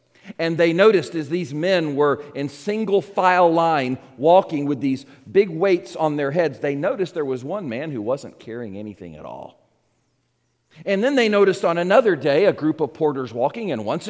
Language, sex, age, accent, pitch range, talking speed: English, male, 40-59, American, 130-200 Hz, 190 wpm